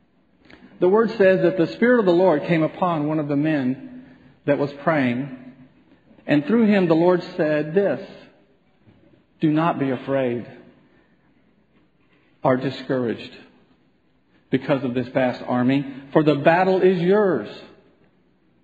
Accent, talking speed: American, 130 wpm